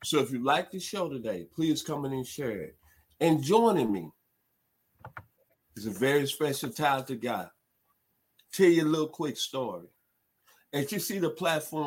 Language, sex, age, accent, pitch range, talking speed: English, male, 50-69, American, 105-155 Hz, 170 wpm